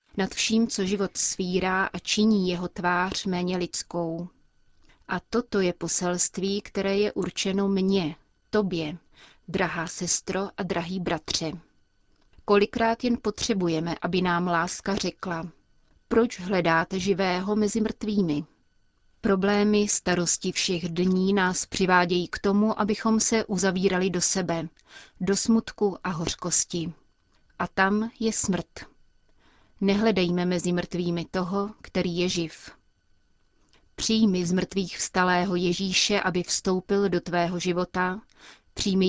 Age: 30-49